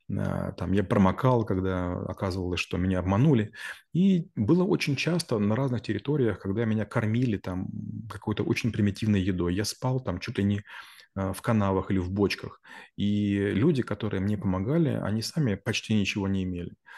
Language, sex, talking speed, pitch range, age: Russian, male, 155 wpm, 95-115 Hz, 30-49